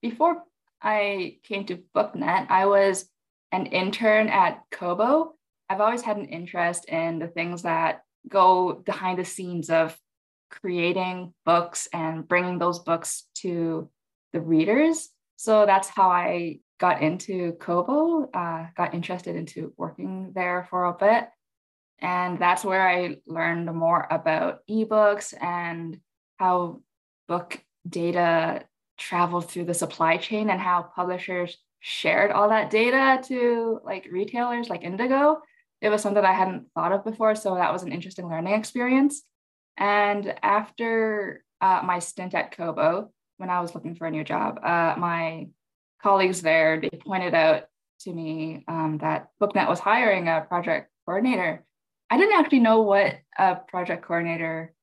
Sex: female